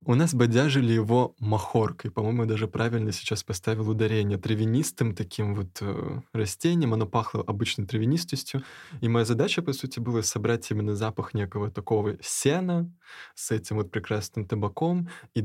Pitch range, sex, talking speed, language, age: 105-120 Hz, male, 150 wpm, Russian, 20-39